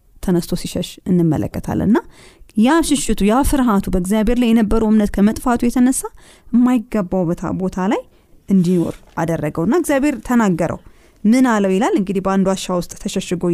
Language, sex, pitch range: Amharic, female, 180-240 Hz